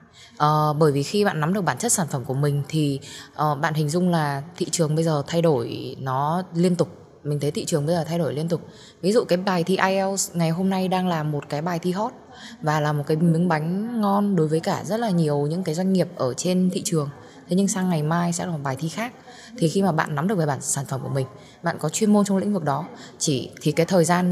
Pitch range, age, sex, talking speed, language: 150-195 Hz, 10-29, female, 275 wpm, Vietnamese